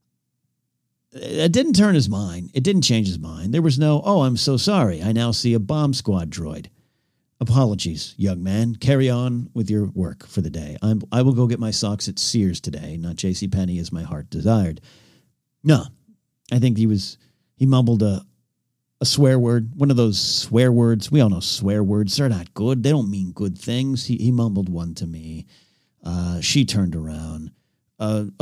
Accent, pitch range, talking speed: American, 90-130 Hz, 195 wpm